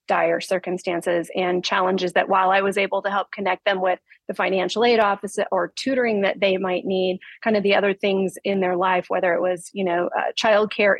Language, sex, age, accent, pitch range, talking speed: English, female, 30-49, American, 185-210 Hz, 215 wpm